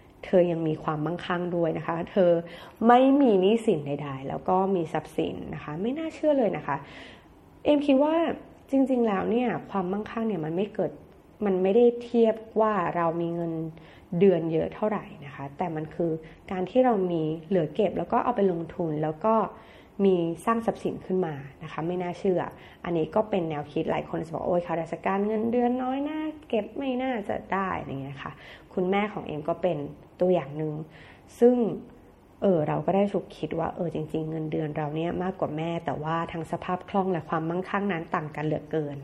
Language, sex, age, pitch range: Thai, female, 20-39, 160-215 Hz